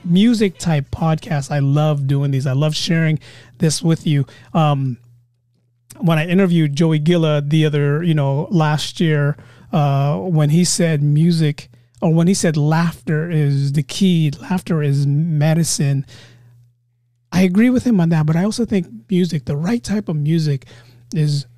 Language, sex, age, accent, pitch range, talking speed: English, male, 30-49, American, 140-195 Hz, 160 wpm